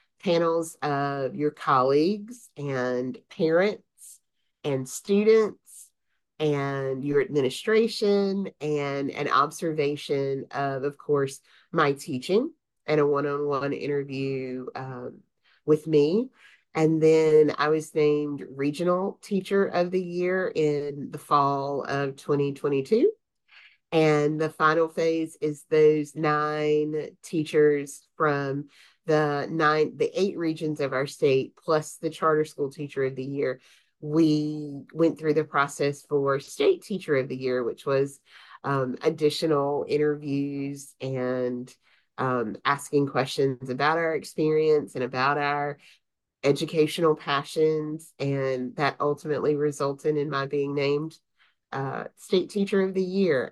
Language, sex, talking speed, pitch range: English, female, 120 wpm, 140-160 Hz